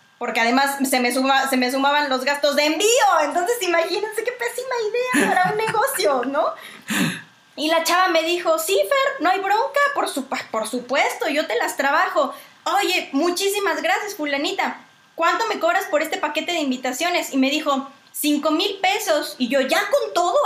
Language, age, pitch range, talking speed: Spanish, 20-39, 260-345 Hz, 175 wpm